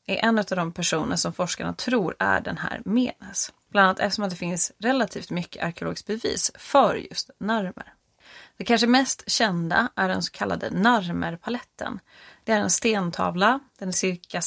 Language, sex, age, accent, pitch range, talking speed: Swedish, female, 30-49, native, 185-235 Hz, 165 wpm